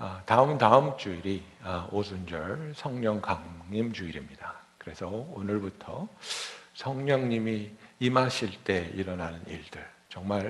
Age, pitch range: 60-79, 100-140 Hz